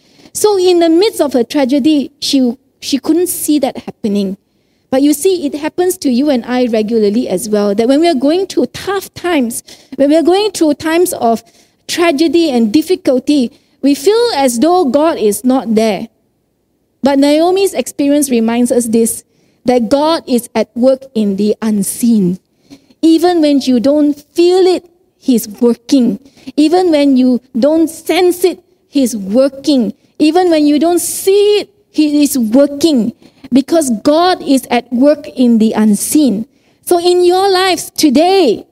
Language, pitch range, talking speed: English, 245-340 Hz, 160 wpm